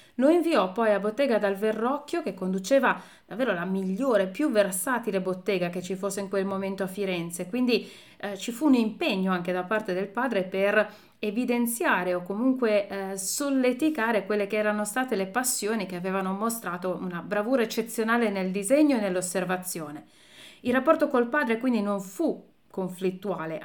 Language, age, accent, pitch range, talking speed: Italian, 30-49, native, 190-245 Hz, 160 wpm